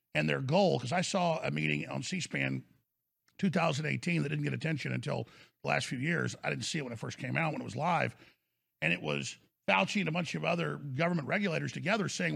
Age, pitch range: 50-69, 155-190 Hz